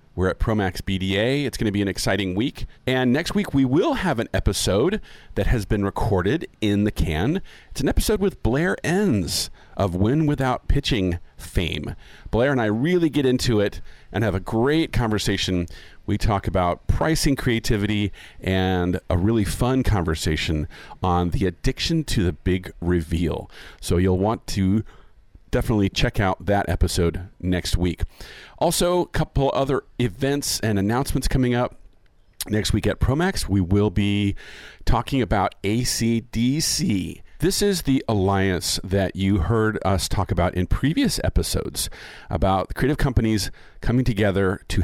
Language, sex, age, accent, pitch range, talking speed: English, male, 40-59, American, 90-125 Hz, 155 wpm